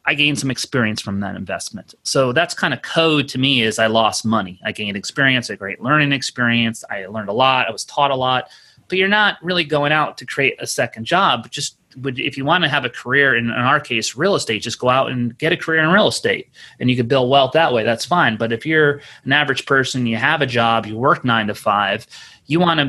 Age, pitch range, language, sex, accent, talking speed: 30-49, 115-145 Hz, English, male, American, 250 wpm